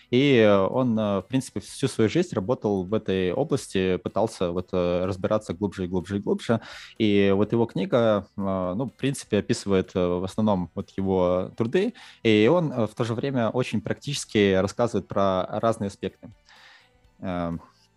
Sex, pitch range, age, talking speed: male, 95-115 Hz, 20-39, 145 wpm